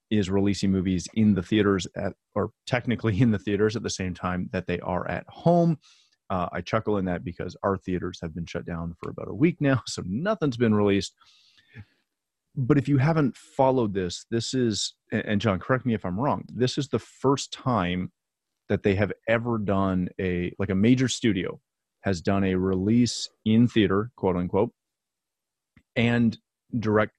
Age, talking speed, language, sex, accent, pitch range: 30-49, 180 wpm, English, male, American, 90-115 Hz